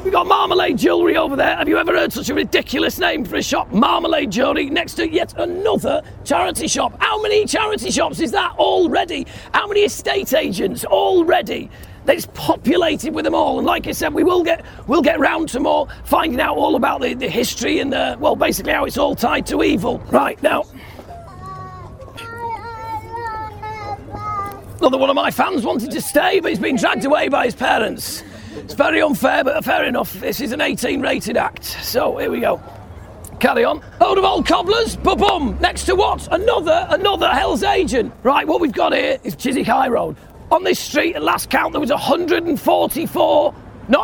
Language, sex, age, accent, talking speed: English, male, 40-59, British, 185 wpm